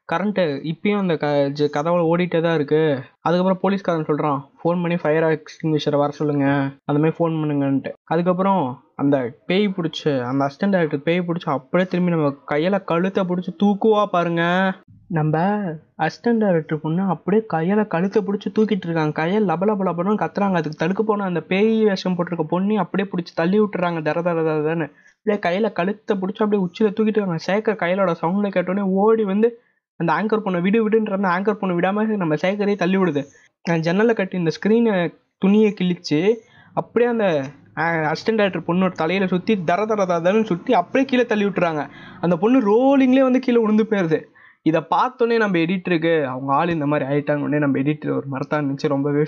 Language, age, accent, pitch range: Tamil, 20-39, native, 155-205 Hz